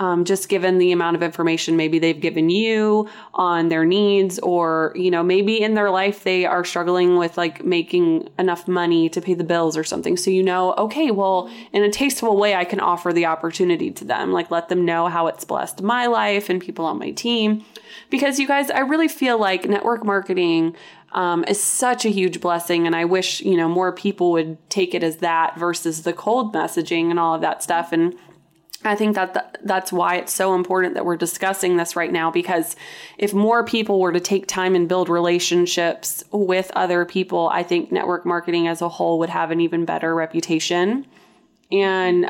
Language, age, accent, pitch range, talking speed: English, 20-39, American, 170-195 Hz, 205 wpm